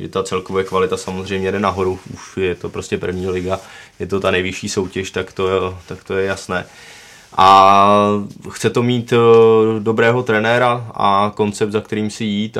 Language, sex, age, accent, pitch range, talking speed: Czech, male, 20-39, native, 95-105 Hz, 175 wpm